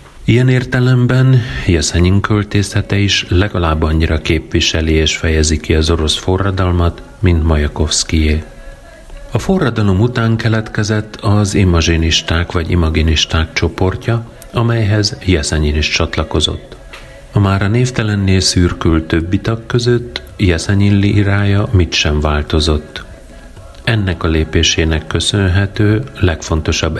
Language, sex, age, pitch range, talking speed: Hungarian, male, 40-59, 80-105 Hz, 100 wpm